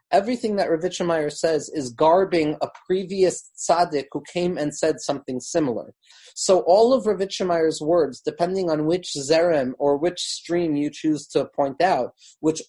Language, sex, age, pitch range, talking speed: English, male, 30-49, 145-175 Hz, 155 wpm